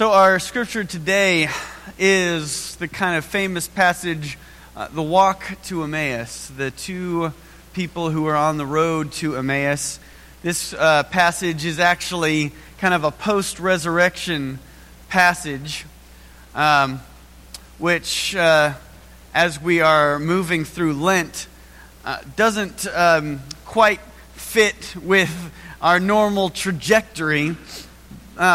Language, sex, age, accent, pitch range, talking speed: English, male, 30-49, American, 150-185 Hz, 115 wpm